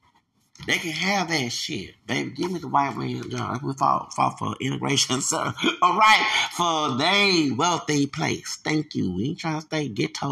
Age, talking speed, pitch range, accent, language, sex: 30-49, 185 wpm, 120-160 Hz, American, English, male